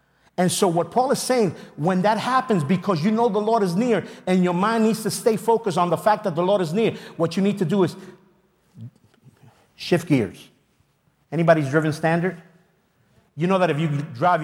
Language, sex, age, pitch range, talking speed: English, male, 50-69, 145-195 Hz, 200 wpm